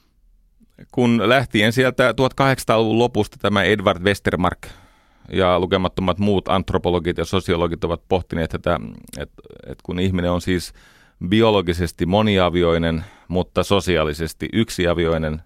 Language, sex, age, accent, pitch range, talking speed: Finnish, male, 30-49, native, 80-100 Hz, 105 wpm